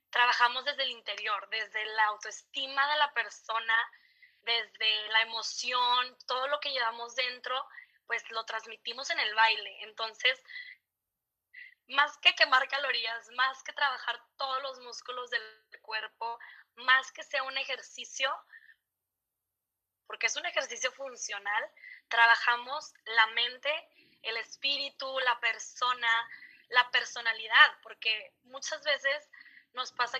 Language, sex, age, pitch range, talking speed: Spanish, female, 20-39, 225-275 Hz, 120 wpm